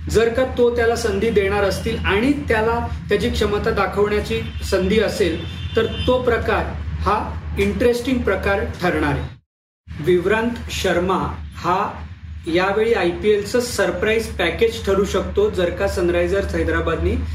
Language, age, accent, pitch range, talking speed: Marathi, 40-59, native, 165-225 Hz, 120 wpm